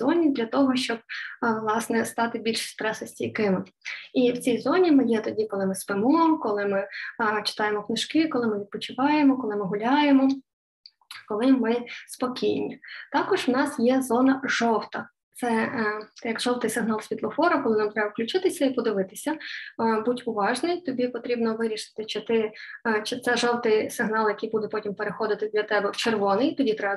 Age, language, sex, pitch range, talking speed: 20-39, Ukrainian, female, 225-275 Hz, 160 wpm